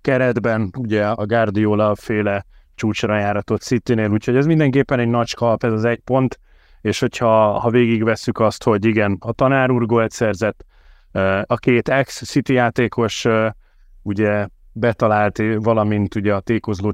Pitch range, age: 105-125 Hz, 30-49